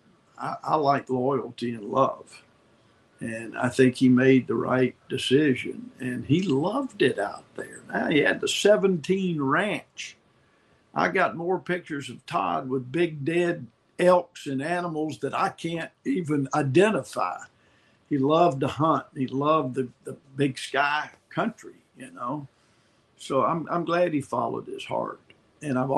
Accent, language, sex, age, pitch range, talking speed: American, English, male, 50-69, 130-175 Hz, 150 wpm